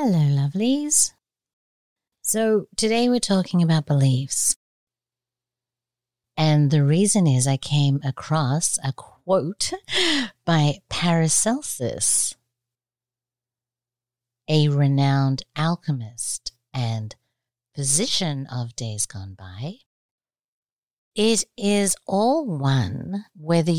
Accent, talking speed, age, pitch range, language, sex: American, 85 wpm, 50-69, 125-165 Hz, English, female